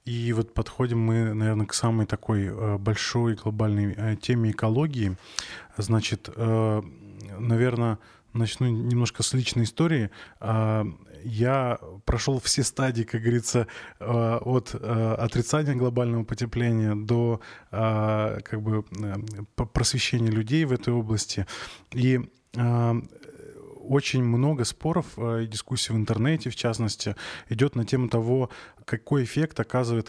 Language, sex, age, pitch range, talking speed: Russian, male, 20-39, 110-125 Hz, 110 wpm